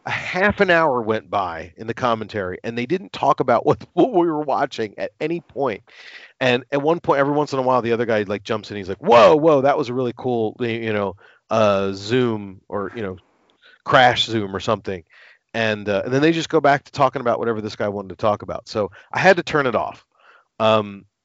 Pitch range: 105-135 Hz